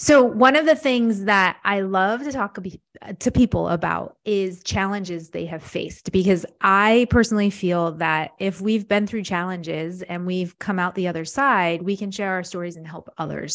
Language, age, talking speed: English, 20-39, 190 wpm